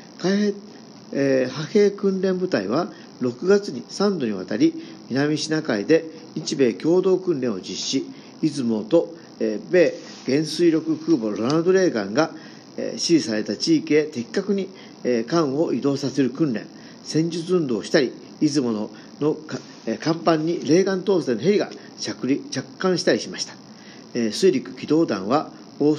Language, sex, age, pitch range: Japanese, male, 50-69, 135-180 Hz